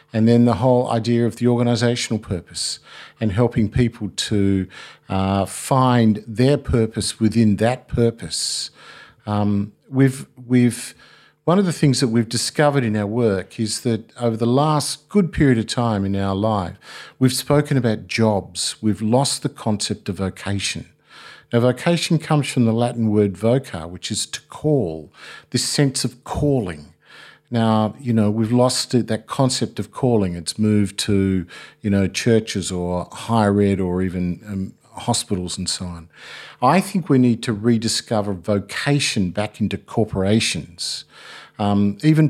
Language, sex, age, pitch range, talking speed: English, male, 50-69, 100-125 Hz, 155 wpm